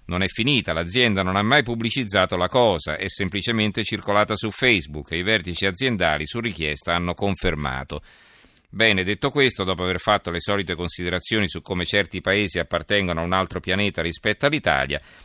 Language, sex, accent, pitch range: Italian, male, native, 85-110 Hz